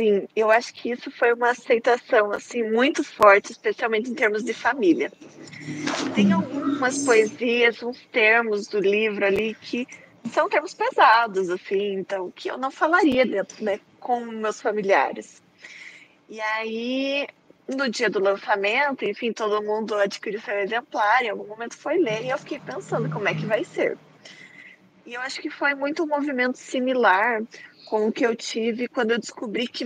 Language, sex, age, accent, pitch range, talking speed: Portuguese, female, 20-39, Brazilian, 215-275 Hz, 155 wpm